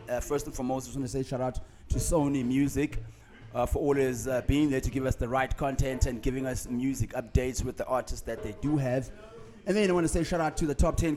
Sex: male